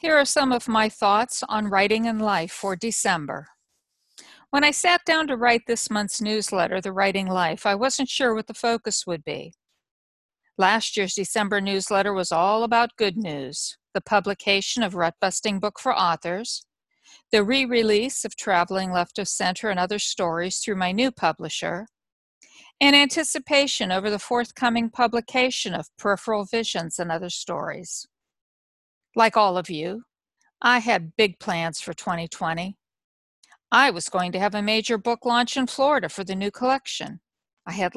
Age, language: 50-69, English